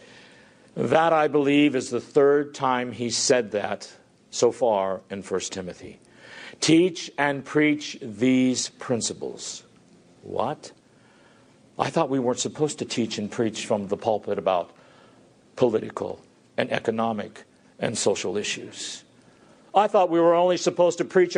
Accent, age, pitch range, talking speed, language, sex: American, 50-69, 175-250 Hz, 135 wpm, English, male